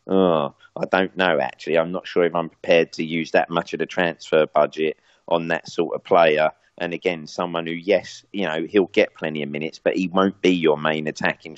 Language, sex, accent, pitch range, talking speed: English, male, British, 80-100 Hz, 225 wpm